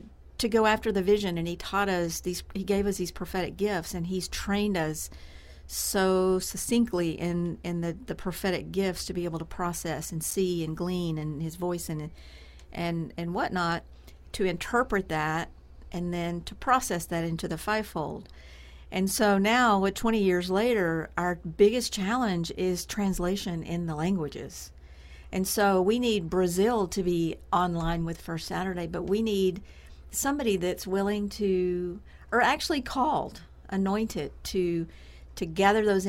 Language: English